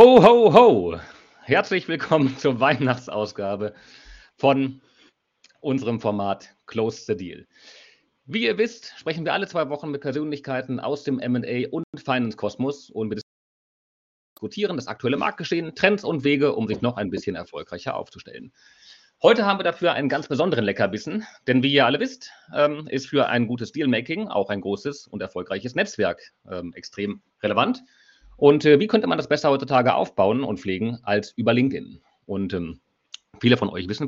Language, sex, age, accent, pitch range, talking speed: German, male, 40-59, German, 105-140 Hz, 160 wpm